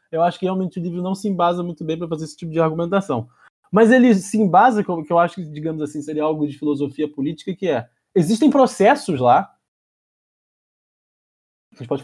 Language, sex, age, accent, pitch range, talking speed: Portuguese, male, 20-39, Brazilian, 160-220 Hz, 205 wpm